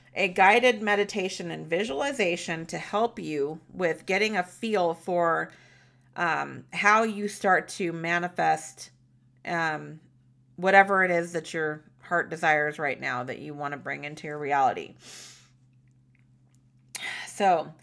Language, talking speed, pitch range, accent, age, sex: English, 130 wpm, 145-205 Hz, American, 30-49, female